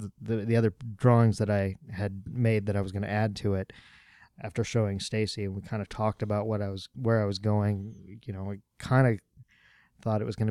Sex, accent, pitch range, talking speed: male, American, 100-115 Hz, 235 wpm